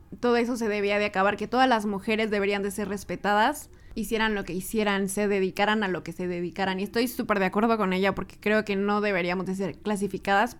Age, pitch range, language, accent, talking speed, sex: 20-39, 195-225 Hz, Spanish, Mexican, 225 wpm, female